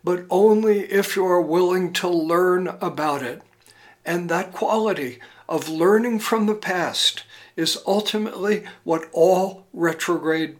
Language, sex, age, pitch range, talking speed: English, male, 60-79, 165-205 Hz, 130 wpm